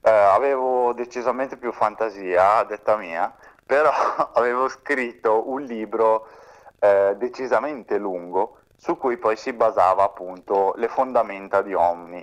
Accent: native